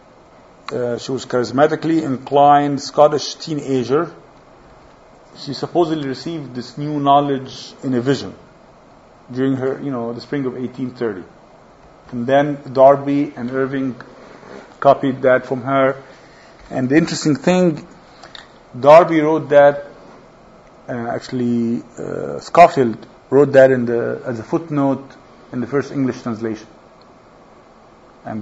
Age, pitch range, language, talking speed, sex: 50-69, 125-145 Hz, English, 120 wpm, male